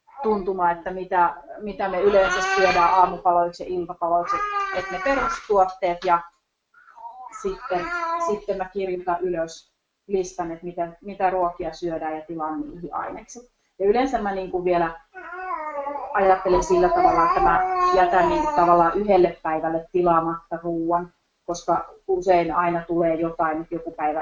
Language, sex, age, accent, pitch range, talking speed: English, female, 30-49, Finnish, 170-210 Hz, 135 wpm